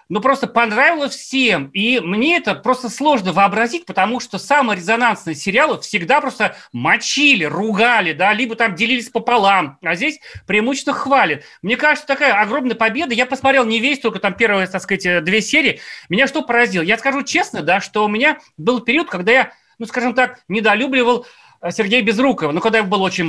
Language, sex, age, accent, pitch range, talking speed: Russian, male, 30-49, native, 195-255 Hz, 180 wpm